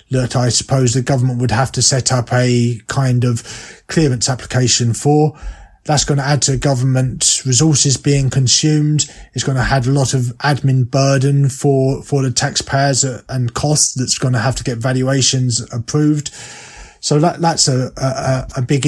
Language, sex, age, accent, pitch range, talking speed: English, male, 30-49, British, 120-140 Hz, 175 wpm